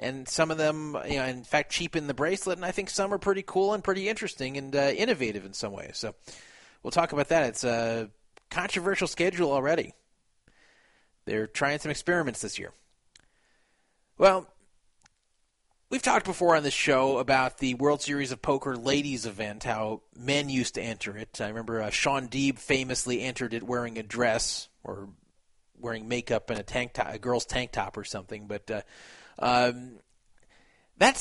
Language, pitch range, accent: English, 120-165 Hz, American